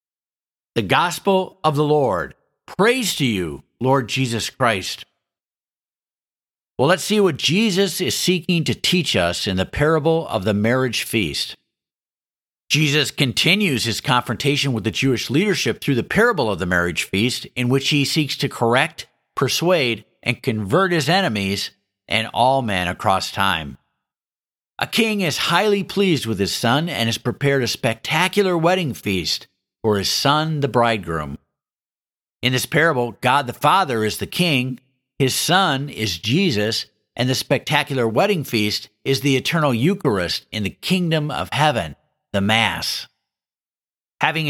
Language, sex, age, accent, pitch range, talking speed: English, male, 50-69, American, 110-165 Hz, 145 wpm